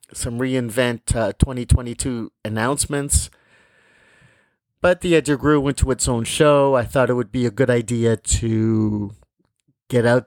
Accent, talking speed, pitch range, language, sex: American, 150 wpm, 110-140 Hz, English, male